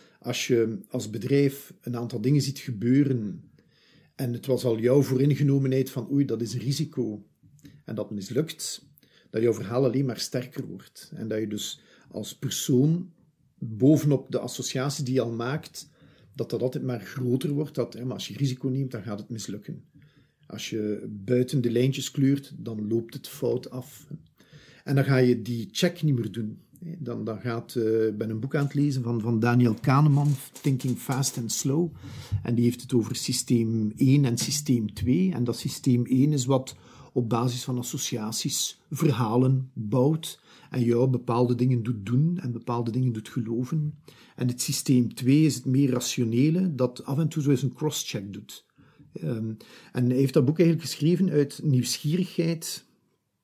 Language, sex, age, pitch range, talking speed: Dutch, male, 50-69, 120-145 Hz, 180 wpm